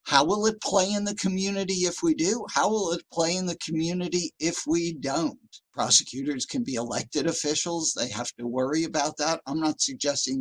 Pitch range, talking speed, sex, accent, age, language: 135-180 Hz, 195 wpm, male, American, 60-79, English